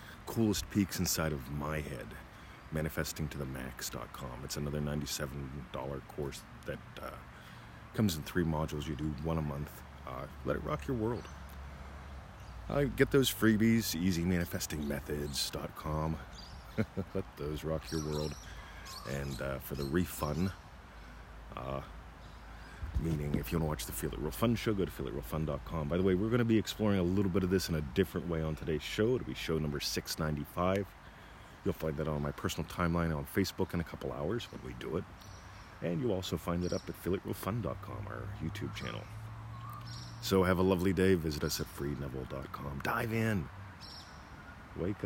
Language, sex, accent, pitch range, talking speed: English, male, American, 75-95 Hz, 175 wpm